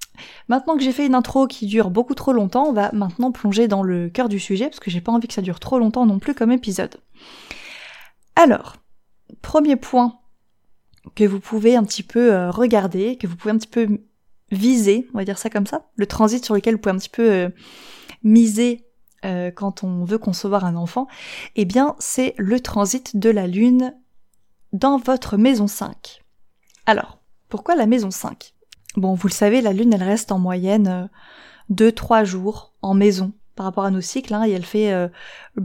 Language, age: French, 20-39